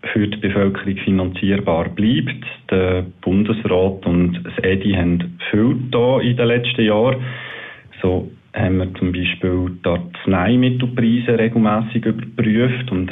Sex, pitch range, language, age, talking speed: male, 95-120 Hz, German, 40-59, 125 wpm